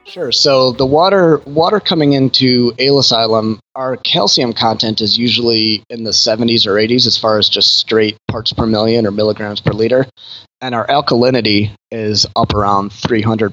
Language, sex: English, male